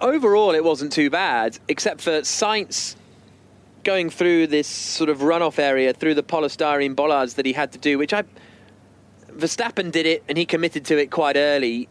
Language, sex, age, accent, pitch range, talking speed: English, male, 30-49, British, 135-185 Hz, 180 wpm